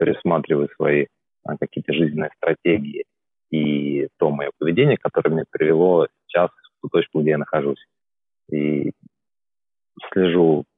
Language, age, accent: Russian, 30-49, native